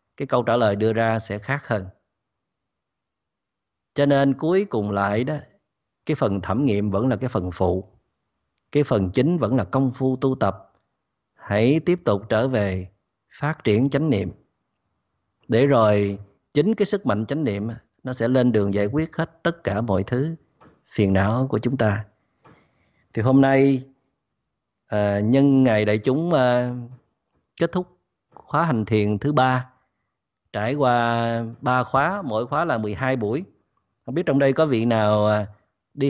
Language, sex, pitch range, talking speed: Vietnamese, male, 110-145 Hz, 165 wpm